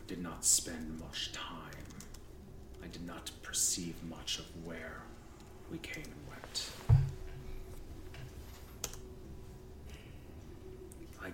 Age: 30-49